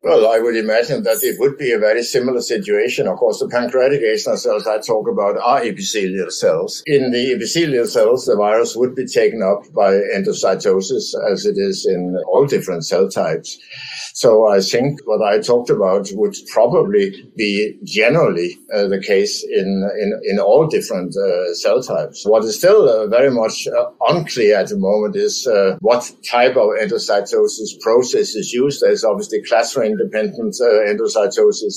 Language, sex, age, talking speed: English, male, 60-79, 170 wpm